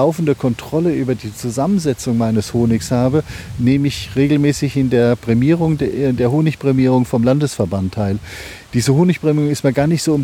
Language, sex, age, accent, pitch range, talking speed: German, male, 40-59, German, 120-150 Hz, 165 wpm